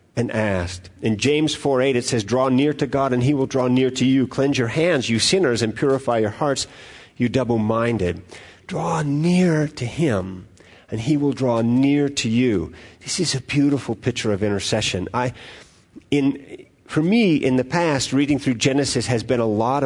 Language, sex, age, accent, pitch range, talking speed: English, male, 50-69, American, 110-135 Hz, 190 wpm